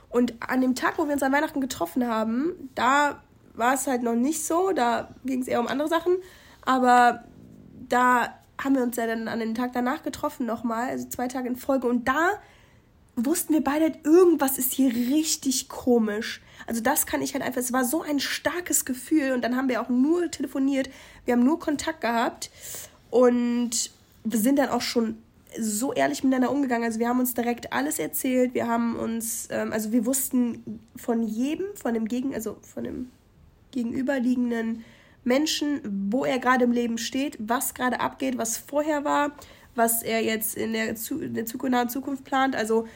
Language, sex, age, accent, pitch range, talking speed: German, female, 20-39, German, 230-280 Hz, 185 wpm